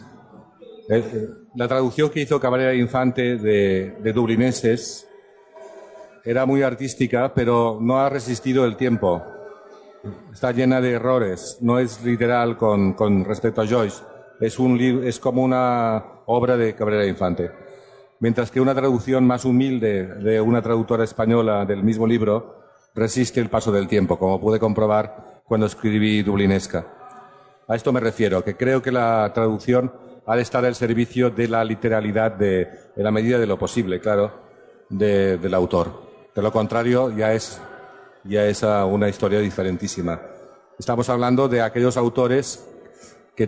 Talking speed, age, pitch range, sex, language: 145 wpm, 50-69, 105-125 Hz, male, Italian